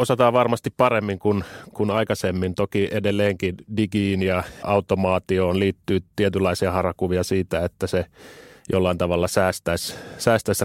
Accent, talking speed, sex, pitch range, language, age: native, 120 wpm, male, 90-100 Hz, Finnish, 30-49